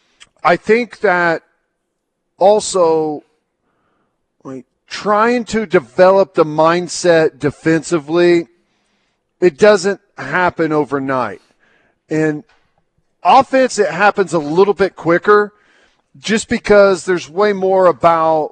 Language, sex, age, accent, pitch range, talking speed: English, male, 40-59, American, 145-190 Hz, 95 wpm